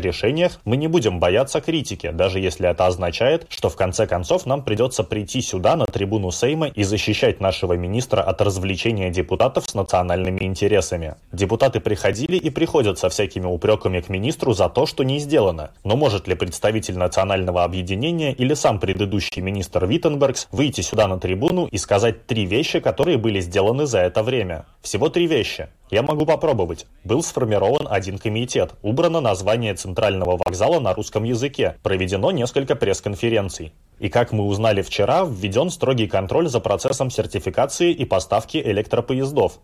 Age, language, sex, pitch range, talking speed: 20-39, Russian, male, 95-130 Hz, 160 wpm